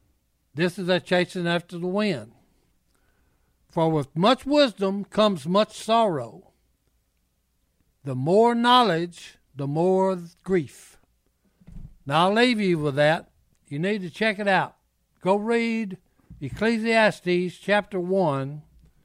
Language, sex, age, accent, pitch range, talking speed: English, male, 60-79, American, 135-195 Hz, 115 wpm